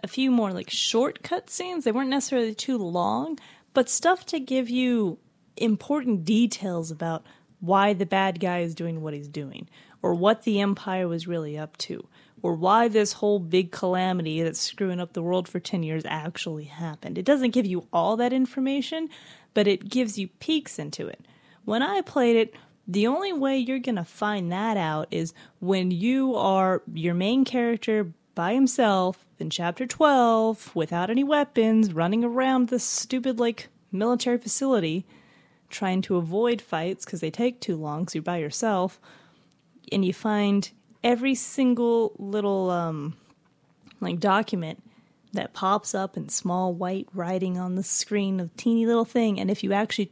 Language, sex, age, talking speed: English, female, 30-49, 170 wpm